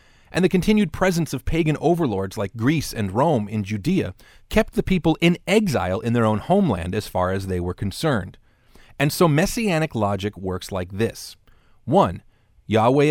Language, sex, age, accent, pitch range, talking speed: English, male, 40-59, American, 100-150 Hz, 170 wpm